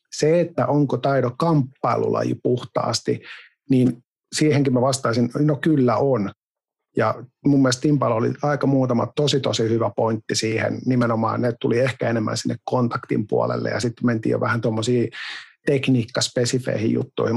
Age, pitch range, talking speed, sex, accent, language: 50-69, 115-135 Hz, 140 wpm, male, native, Finnish